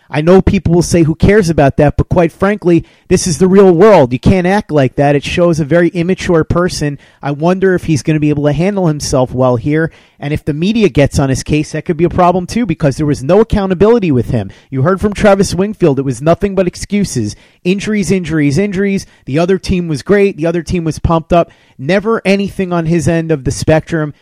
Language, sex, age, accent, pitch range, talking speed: English, male, 30-49, American, 145-185 Hz, 235 wpm